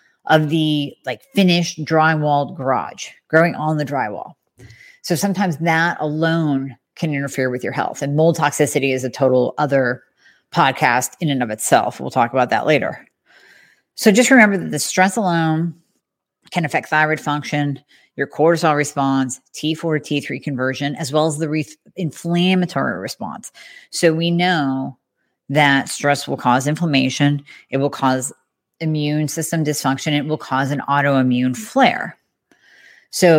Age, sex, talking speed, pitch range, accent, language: 40-59, female, 145 wpm, 140-180 Hz, American, English